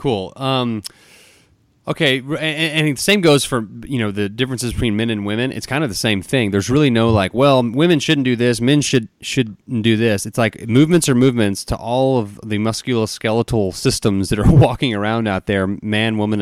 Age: 30-49